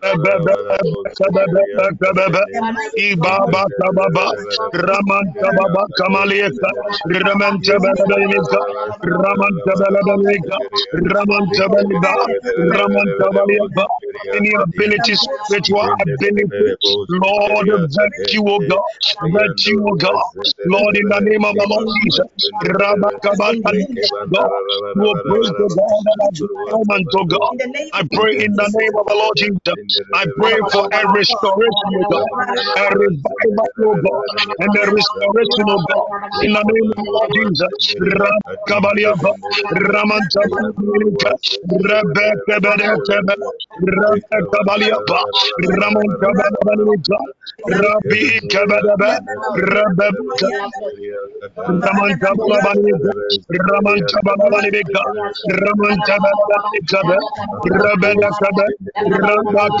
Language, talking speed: English, 65 wpm